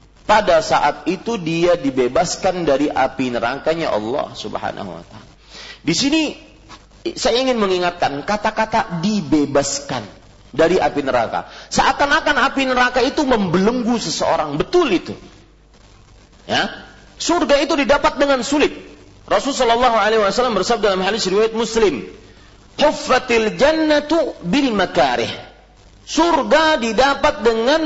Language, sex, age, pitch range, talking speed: Malay, male, 40-59, 185-280 Hz, 115 wpm